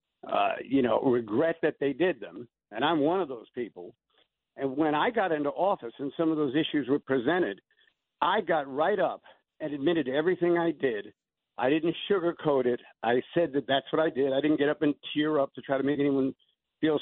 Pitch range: 145-200 Hz